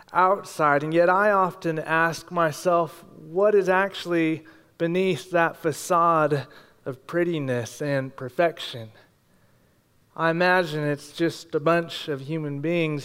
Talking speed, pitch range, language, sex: 120 wpm, 150-190 Hz, English, male